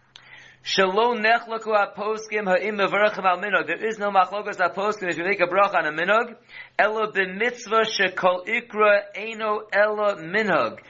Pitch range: 190-220 Hz